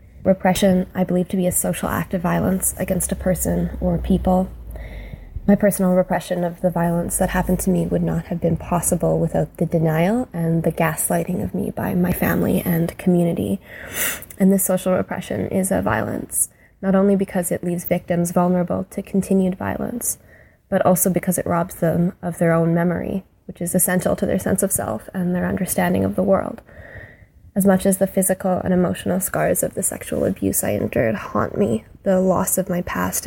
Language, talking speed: English, 190 wpm